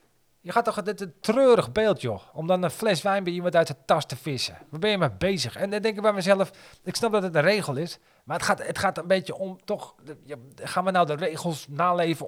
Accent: Dutch